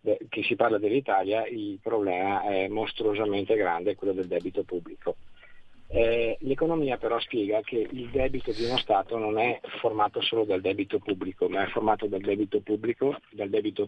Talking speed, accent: 165 wpm, native